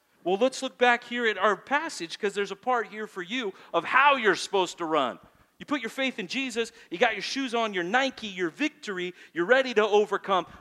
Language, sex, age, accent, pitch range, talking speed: English, male, 40-59, American, 145-210 Hz, 225 wpm